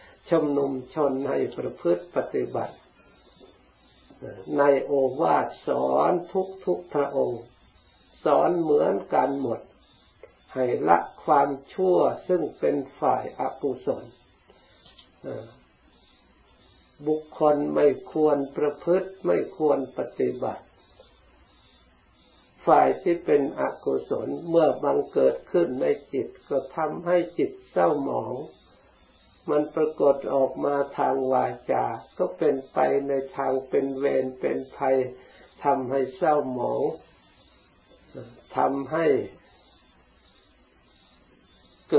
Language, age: Thai, 60-79